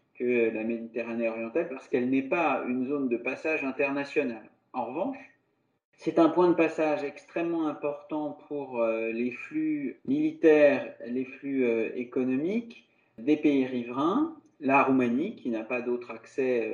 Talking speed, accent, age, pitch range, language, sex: 140 wpm, French, 40-59, 125-190 Hz, French, male